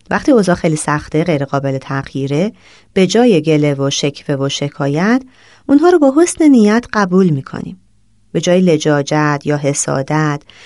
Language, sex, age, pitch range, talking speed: Persian, female, 30-49, 150-240 Hz, 145 wpm